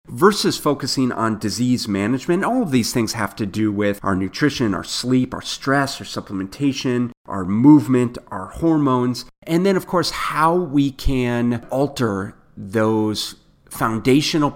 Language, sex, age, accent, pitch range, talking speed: English, male, 30-49, American, 110-140 Hz, 145 wpm